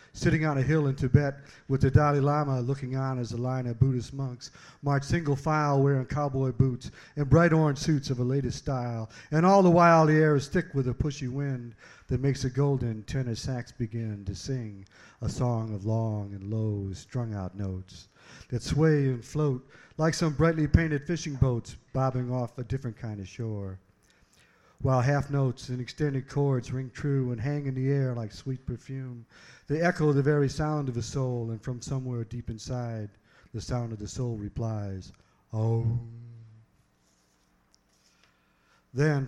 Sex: male